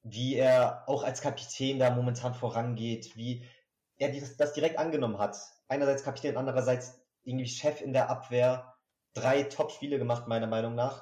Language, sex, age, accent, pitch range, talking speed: German, male, 30-49, German, 105-125 Hz, 150 wpm